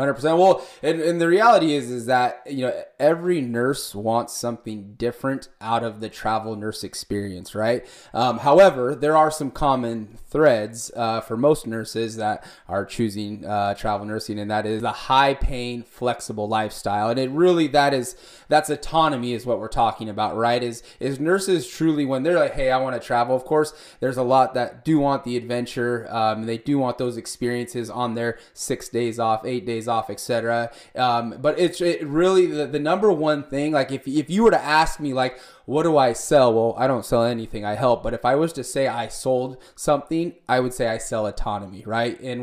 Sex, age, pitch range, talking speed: male, 20-39, 115-150 Hz, 205 wpm